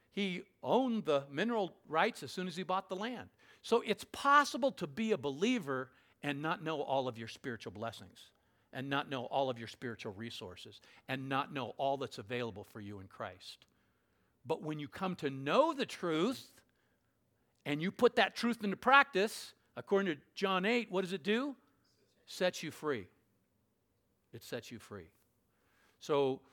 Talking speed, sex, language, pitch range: 170 wpm, male, English, 120-180 Hz